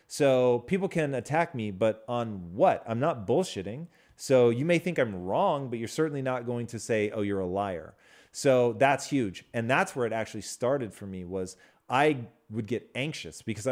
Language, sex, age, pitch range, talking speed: English, male, 30-49, 105-130 Hz, 195 wpm